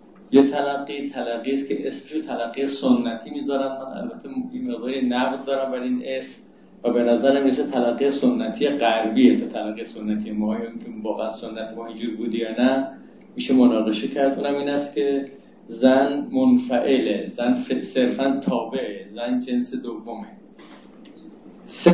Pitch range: 125-160 Hz